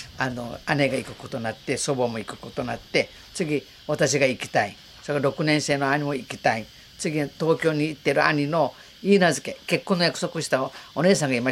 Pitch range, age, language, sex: 130-155 Hz, 50-69, Japanese, female